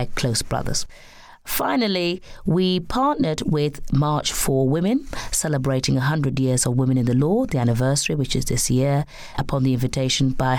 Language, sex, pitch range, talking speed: English, female, 130-185 Hz, 155 wpm